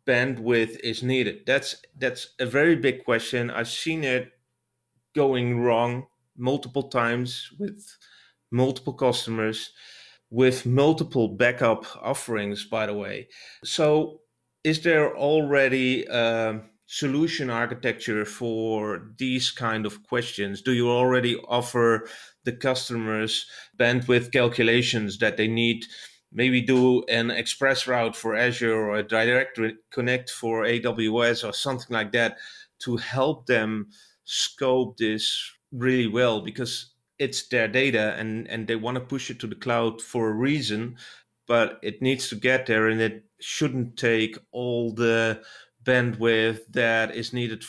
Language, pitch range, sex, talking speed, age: English, 115-130 Hz, male, 135 wpm, 30-49